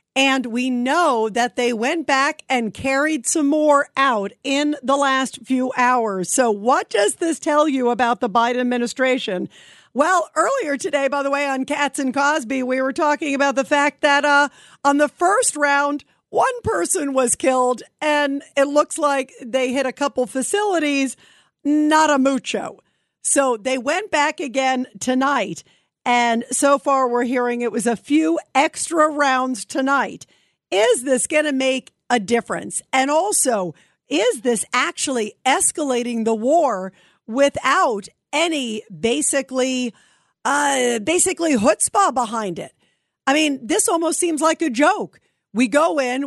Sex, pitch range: female, 245-295 Hz